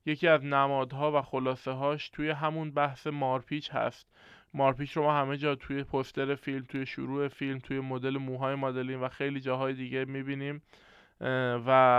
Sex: male